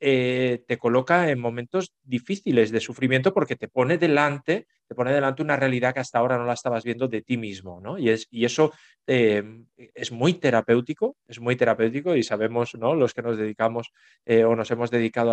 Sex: male